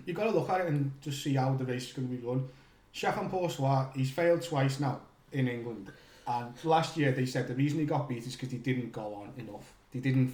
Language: English